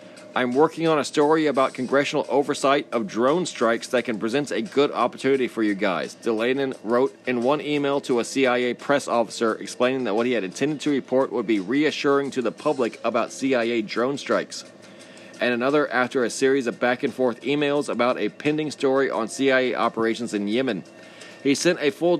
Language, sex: English, male